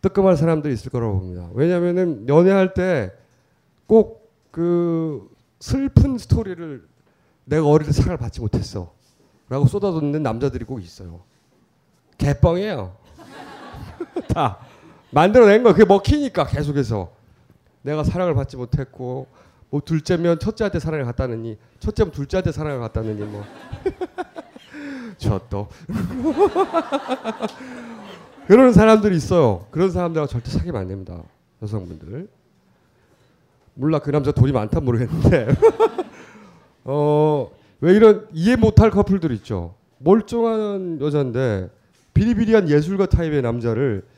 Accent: native